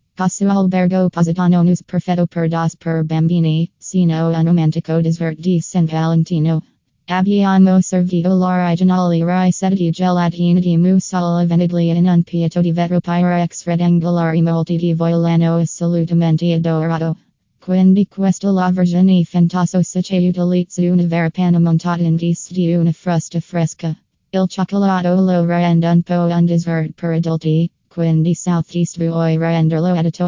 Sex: female